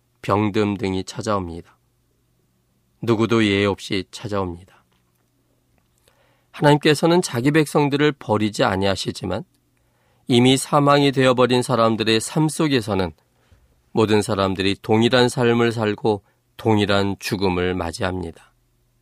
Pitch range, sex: 100-130 Hz, male